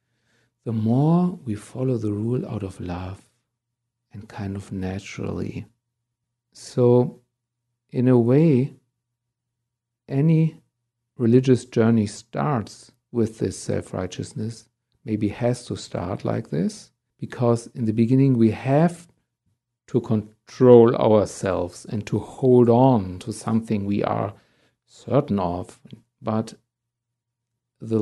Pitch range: 110-120 Hz